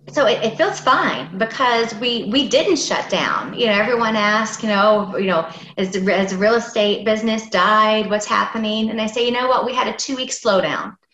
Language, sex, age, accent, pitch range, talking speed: English, female, 30-49, American, 195-235 Hz, 215 wpm